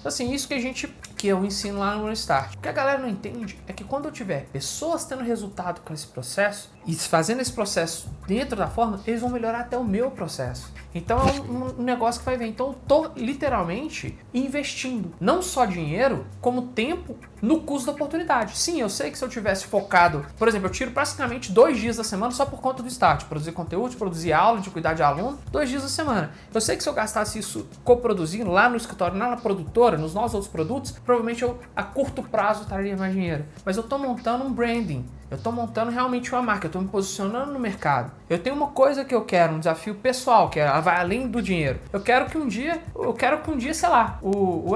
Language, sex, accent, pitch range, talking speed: Portuguese, male, Brazilian, 180-255 Hz, 230 wpm